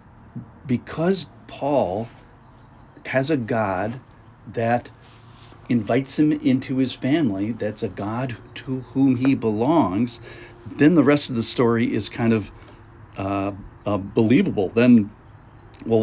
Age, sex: 50-69, male